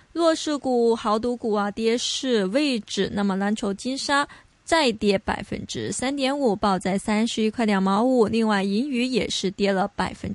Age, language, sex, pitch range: 20-39, Chinese, female, 205-265 Hz